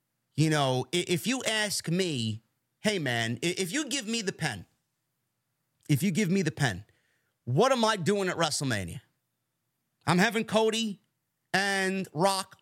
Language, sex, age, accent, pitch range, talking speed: English, male, 30-49, American, 145-240 Hz, 145 wpm